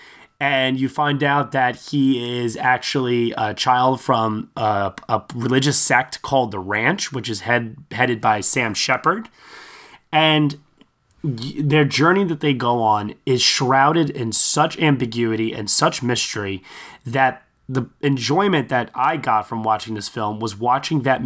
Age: 20-39